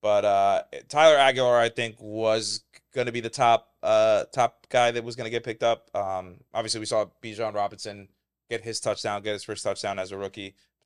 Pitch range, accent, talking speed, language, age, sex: 100-120 Hz, American, 205 wpm, English, 30-49, male